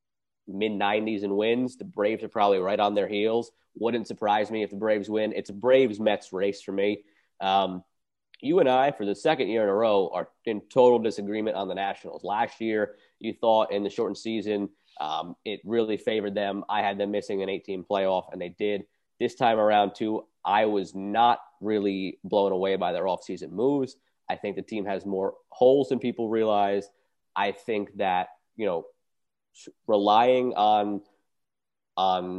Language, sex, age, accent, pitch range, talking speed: English, male, 30-49, American, 100-115 Hz, 185 wpm